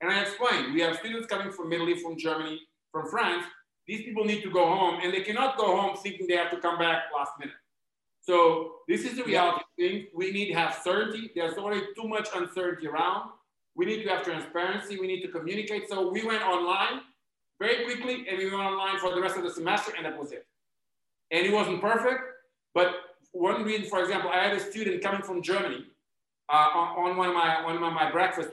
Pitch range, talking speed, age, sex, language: 175-215 Hz, 220 wpm, 50-69, male, English